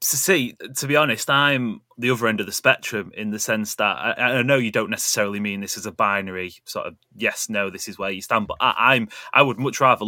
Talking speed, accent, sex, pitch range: 260 wpm, British, male, 105-135 Hz